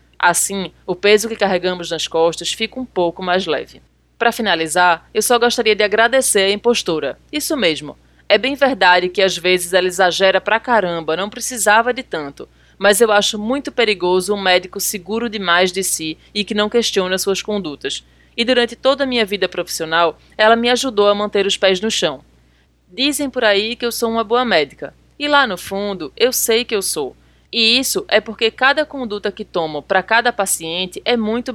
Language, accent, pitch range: Portuguese, Brazilian, 175-225 Hz